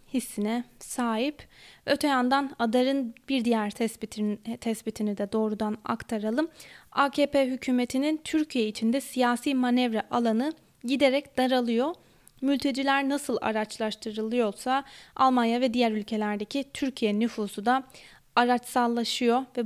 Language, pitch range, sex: Turkish, 220-265 Hz, female